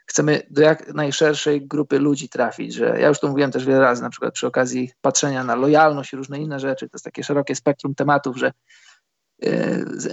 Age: 20-39